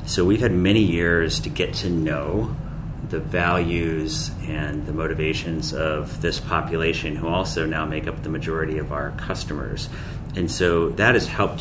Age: 30-49